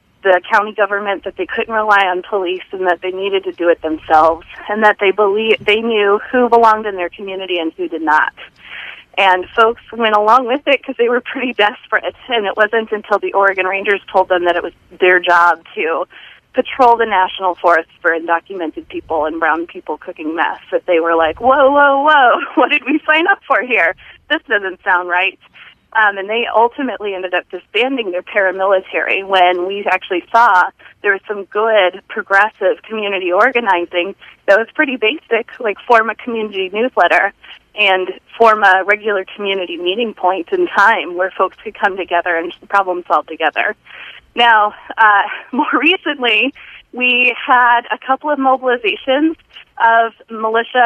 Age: 30-49